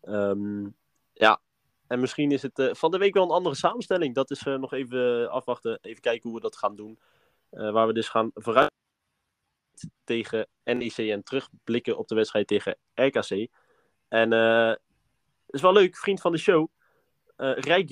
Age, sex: 20-39, male